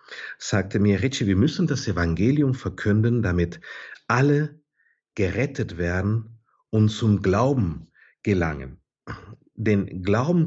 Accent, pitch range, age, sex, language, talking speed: German, 95-140 Hz, 50-69, male, German, 105 wpm